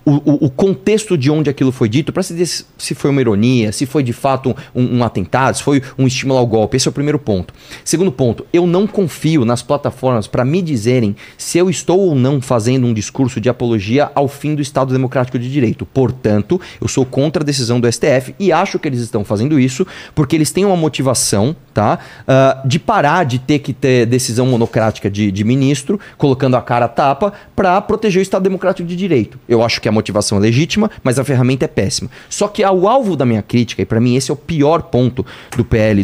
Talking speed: 220 wpm